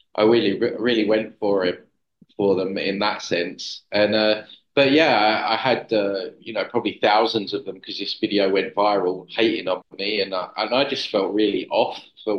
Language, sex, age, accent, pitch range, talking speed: English, male, 20-39, British, 105-125 Hz, 205 wpm